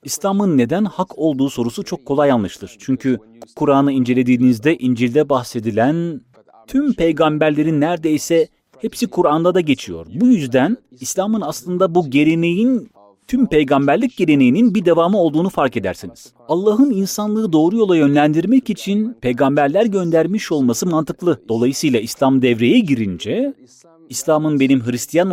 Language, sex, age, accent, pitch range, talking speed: Turkish, male, 40-59, native, 120-190 Hz, 120 wpm